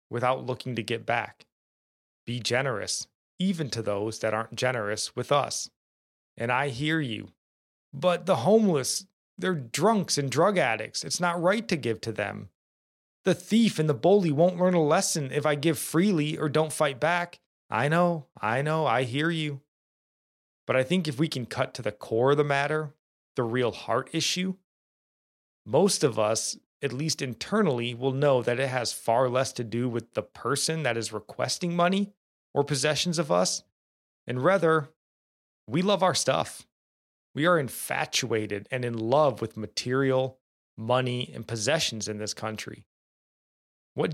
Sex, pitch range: male, 110-155 Hz